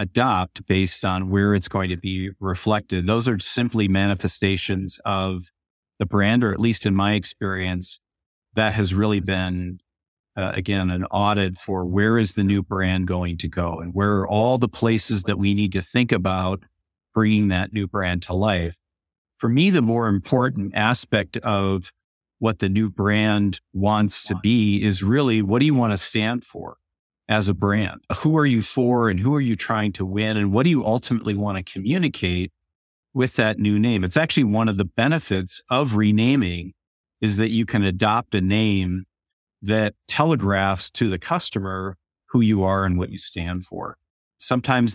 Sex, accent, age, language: male, American, 50-69, English